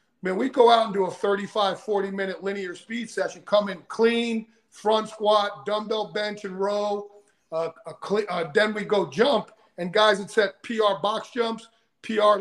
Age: 50-69